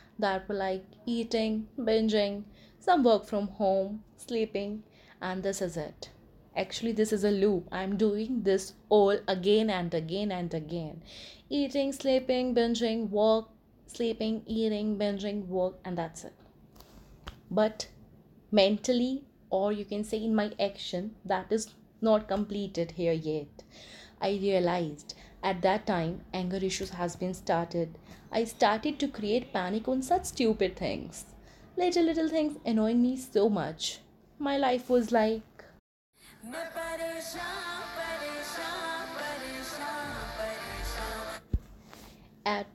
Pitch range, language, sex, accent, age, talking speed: 195-255 Hz, English, female, Indian, 20-39, 120 wpm